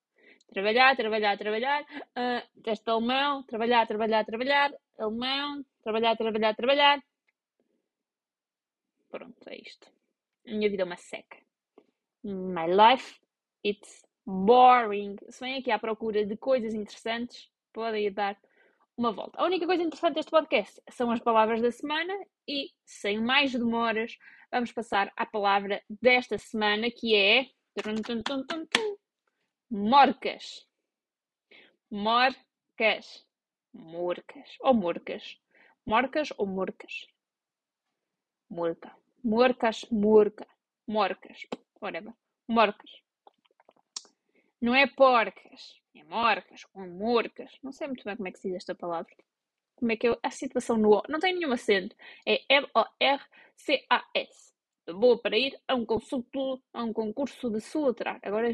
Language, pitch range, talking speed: Portuguese, 215-270 Hz, 130 wpm